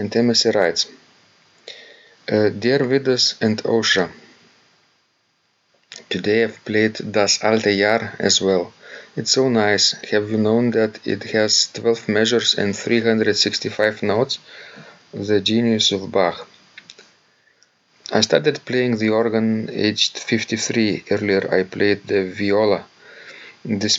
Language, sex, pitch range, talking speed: English, male, 100-115 Hz, 115 wpm